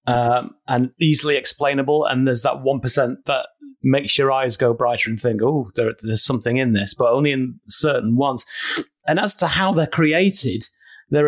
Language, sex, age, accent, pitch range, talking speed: English, male, 30-49, British, 130-160 Hz, 180 wpm